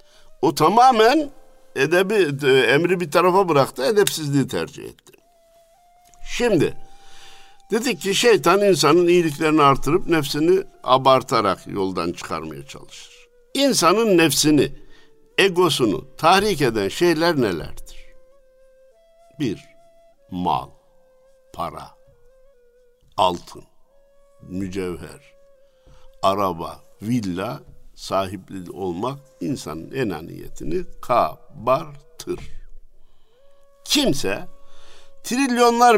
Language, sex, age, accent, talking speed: Turkish, male, 60-79, native, 70 wpm